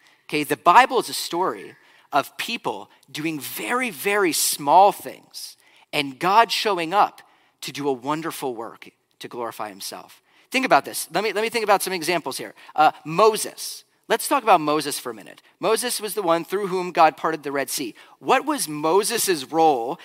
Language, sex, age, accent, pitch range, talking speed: English, male, 40-59, American, 170-240 Hz, 185 wpm